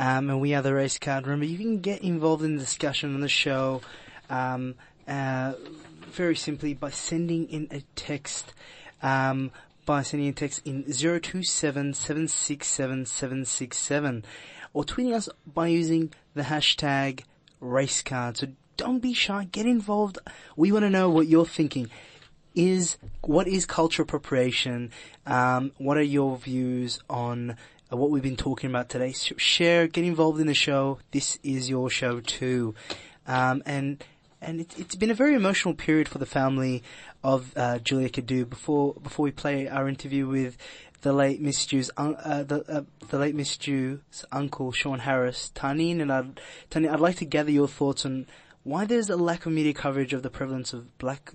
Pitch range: 130-160 Hz